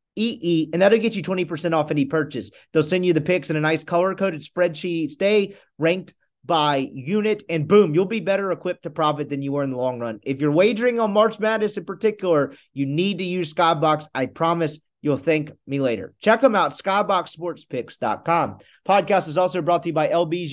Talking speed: 210 wpm